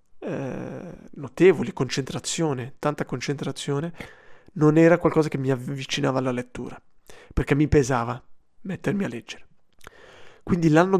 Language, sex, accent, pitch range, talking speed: Italian, male, native, 135-175 Hz, 115 wpm